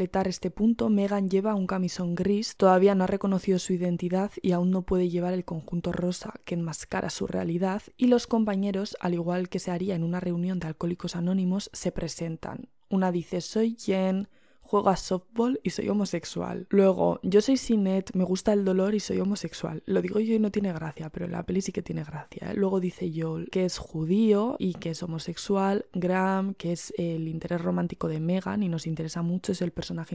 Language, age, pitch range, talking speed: Spanish, 20-39, 175-200 Hz, 200 wpm